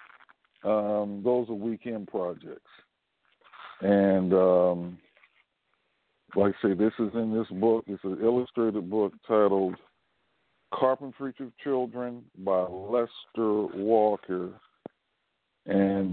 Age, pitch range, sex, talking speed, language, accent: 60-79, 100-130 Hz, male, 100 wpm, English, American